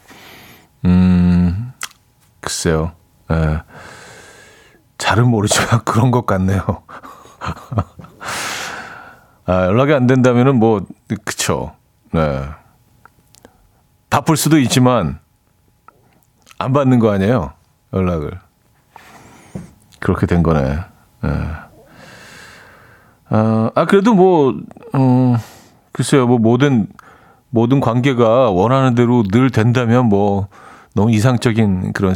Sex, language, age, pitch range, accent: male, Korean, 40-59, 100-135 Hz, native